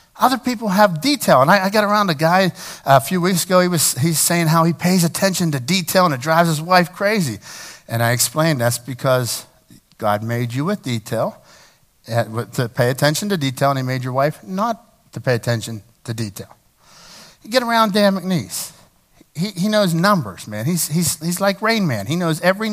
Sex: male